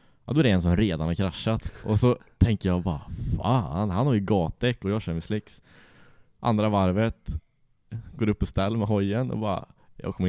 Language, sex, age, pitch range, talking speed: English, male, 20-39, 85-110 Hz, 210 wpm